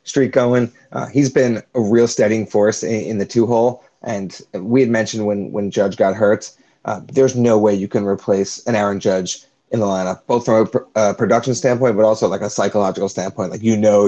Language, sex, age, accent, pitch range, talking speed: English, male, 30-49, American, 105-125 Hz, 220 wpm